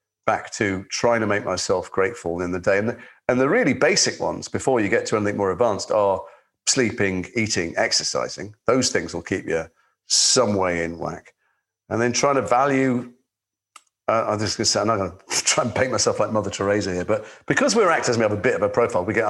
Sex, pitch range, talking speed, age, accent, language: male, 100-125 Hz, 220 wpm, 40-59, British, English